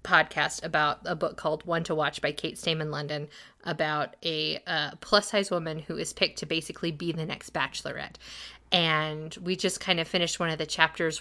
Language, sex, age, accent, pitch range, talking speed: English, female, 20-39, American, 170-225 Hz, 200 wpm